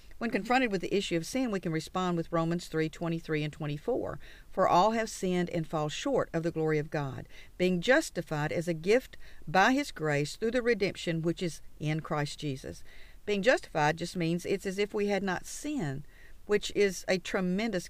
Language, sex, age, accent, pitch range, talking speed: English, female, 50-69, American, 155-205 Hz, 200 wpm